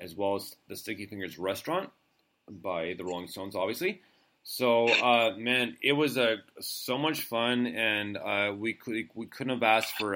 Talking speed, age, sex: 170 wpm, 30-49, male